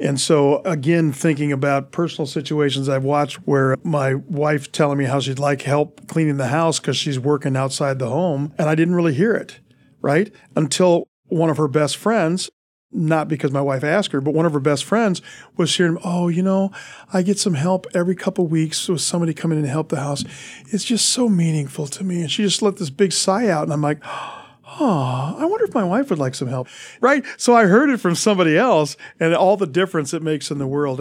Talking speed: 225 wpm